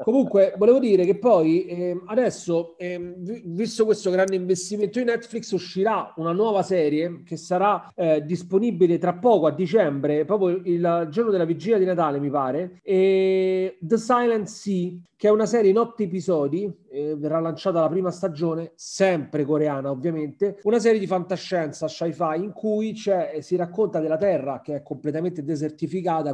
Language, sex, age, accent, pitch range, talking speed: Italian, male, 30-49, native, 160-215 Hz, 155 wpm